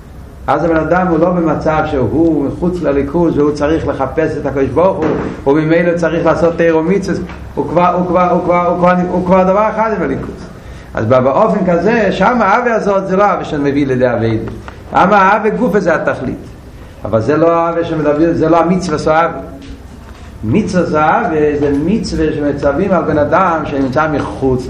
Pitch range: 140-170 Hz